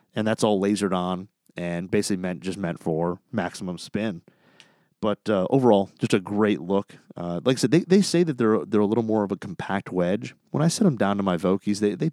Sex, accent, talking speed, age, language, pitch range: male, American, 230 wpm, 30-49, English, 90-125 Hz